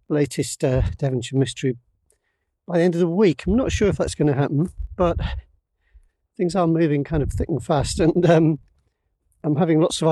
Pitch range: 120-155 Hz